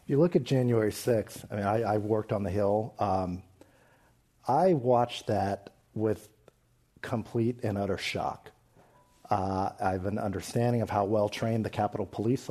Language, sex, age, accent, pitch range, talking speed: English, male, 50-69, American, 105-125 Hz, 165 wpm